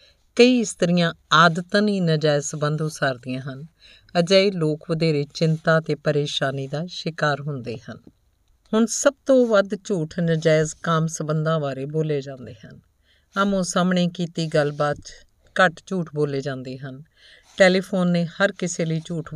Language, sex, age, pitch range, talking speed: Punjabi, female, 50-69, 145-175 Hz, 145 wpm